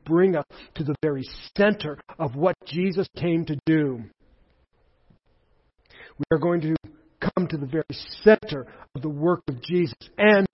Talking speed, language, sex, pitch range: 155 wpm, English, male, 150-195 Hz